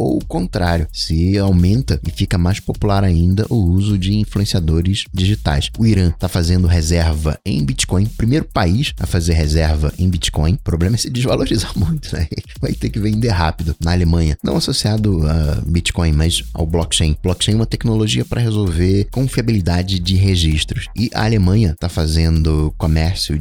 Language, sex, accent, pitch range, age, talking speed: Portuguese, male, Brazilian, 80-105 Hz, 20-39, 165 wpm